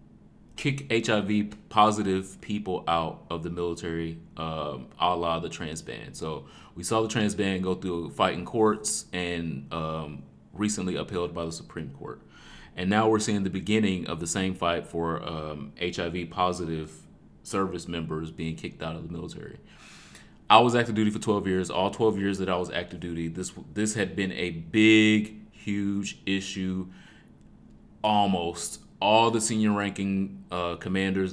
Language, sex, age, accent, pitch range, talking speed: English, male, 30-49, American, 85-110 Hz, 160 wpm